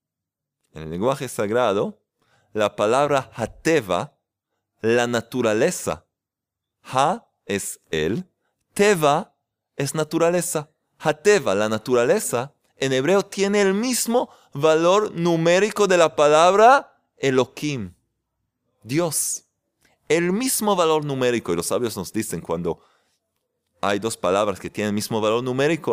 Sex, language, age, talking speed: male, Spanish, 30-49, 115 wpm